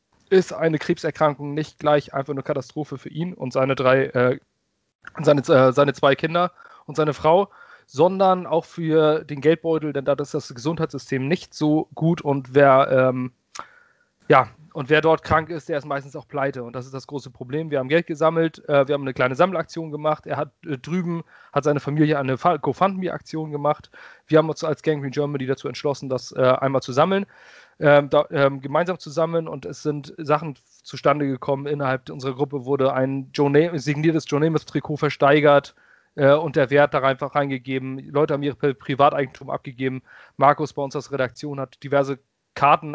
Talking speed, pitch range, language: 185 wpm, 140-160 Hz, German